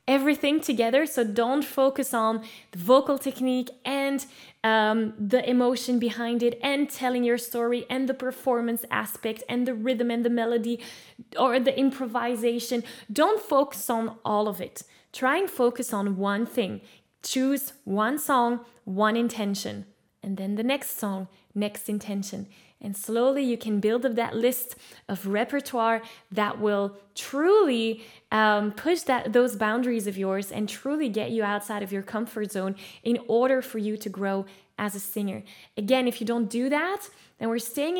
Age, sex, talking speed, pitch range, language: 10-29, female, 165 wpm, 215-260 Hz, English